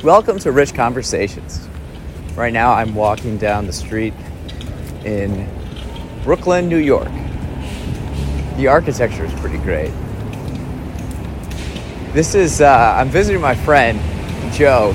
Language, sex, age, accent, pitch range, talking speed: English, male, 30-49, American, 85-110 Hz, 110 wpm